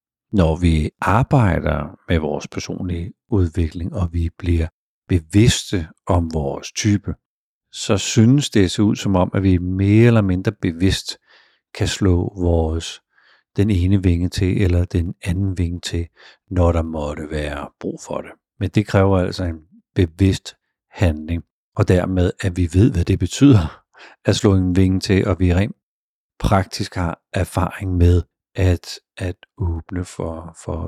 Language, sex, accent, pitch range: Danish, male, native, 85-105 Hz